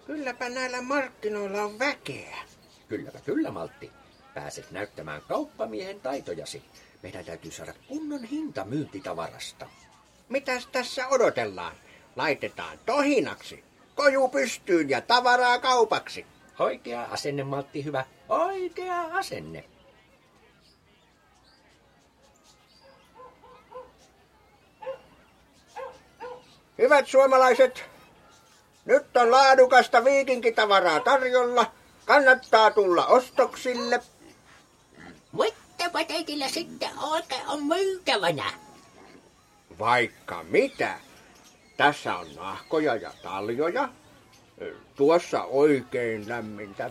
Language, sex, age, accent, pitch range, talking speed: Finnish, male, 60-79, native, 180-285 Hz, 75 wpm